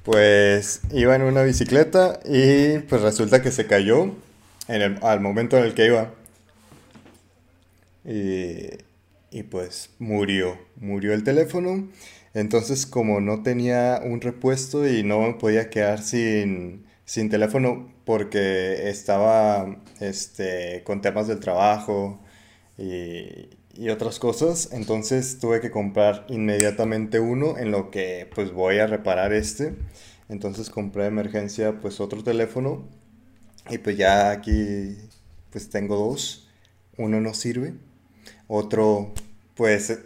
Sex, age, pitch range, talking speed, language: male, 20-39, 100-120 Hz, 125 wpm, Spanish